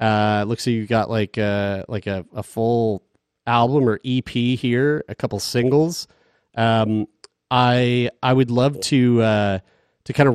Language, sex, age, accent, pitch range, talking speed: English, male, 30-49, American, 105-135 Hz, 170 wpm